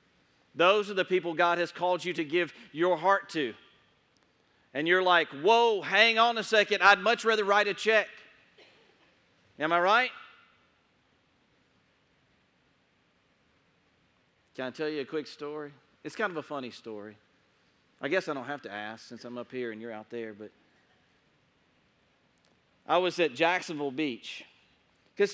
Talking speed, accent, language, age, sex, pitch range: 155 wpm, American, English, 40-59, male, 160-200 Hz